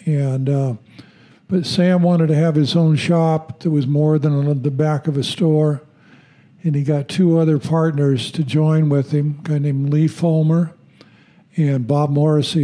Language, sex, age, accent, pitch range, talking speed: English, male, 60-79, American, 140-165 Hz, 180 wpm